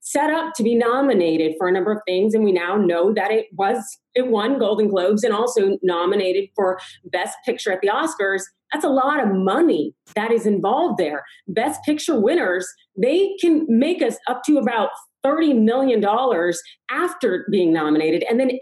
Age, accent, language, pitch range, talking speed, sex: 30-49, American, English, 220-285 Hz, 180 wpm, female